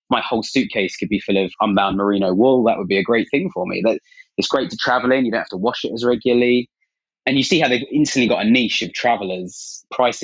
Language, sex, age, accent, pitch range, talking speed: English, male, 20-39, British, 100-125 Hz, 260 wpm